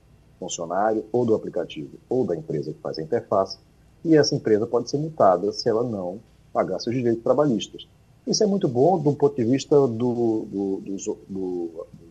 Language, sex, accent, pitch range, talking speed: Portuguese, male, Brazilian, 110-160 Hz, 180 wpm